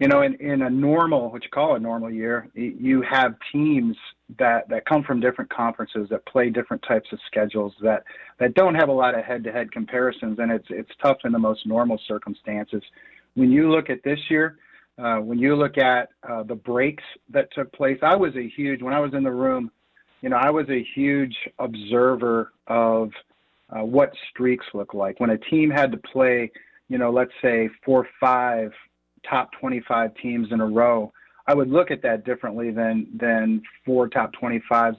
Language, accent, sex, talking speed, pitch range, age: English, American, male, 195 wpm, 115-135 Hz, 40-59